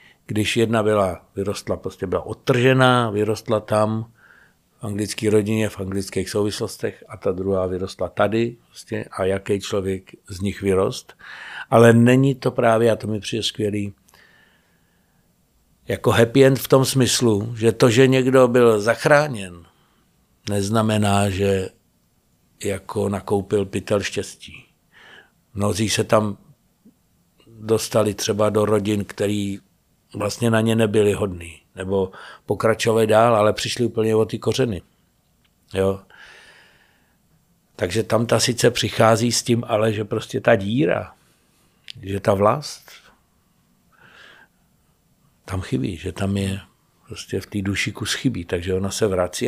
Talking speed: 130 wpm